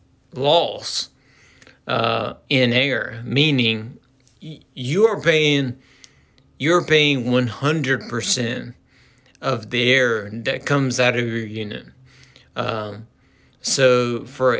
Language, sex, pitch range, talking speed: English, male, 120-140 Hz, 100 wpm